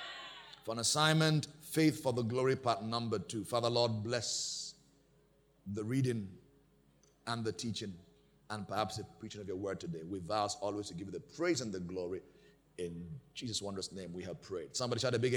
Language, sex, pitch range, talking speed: English, male, 110-140 Hz, 185 wpm